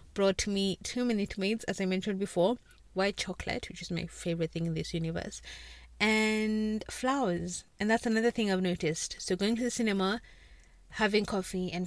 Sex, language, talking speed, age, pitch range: female, English, 175 wpm, 30-49, 175-210 Hz